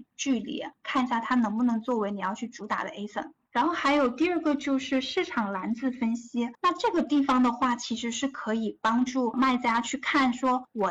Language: Chinese